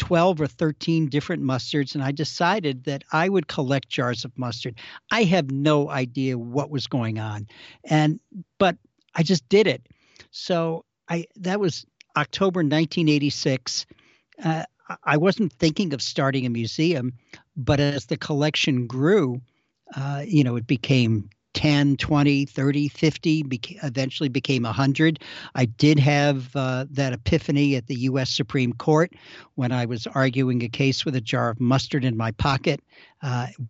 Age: 60-79